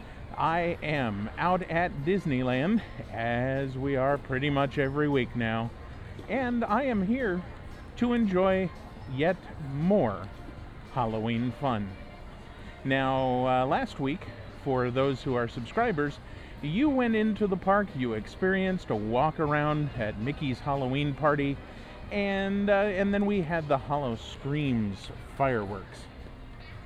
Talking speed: 125 wpm